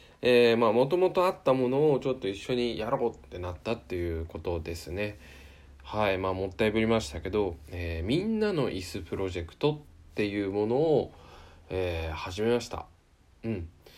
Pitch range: 85-125 Hz